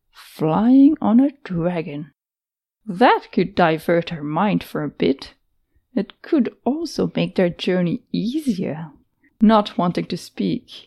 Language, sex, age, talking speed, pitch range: English, female, 20-39, 125 wpm, 180-235 Hz